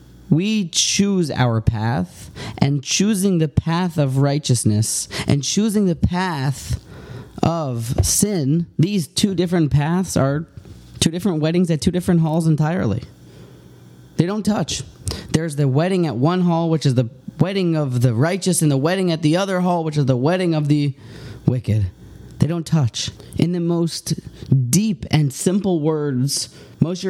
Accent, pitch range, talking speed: American, 130-170 Hz, 155 wpm